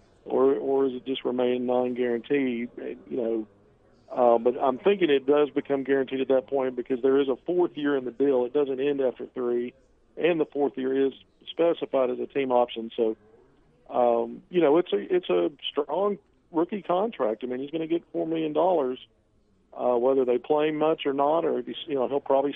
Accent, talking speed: American, 205 wpm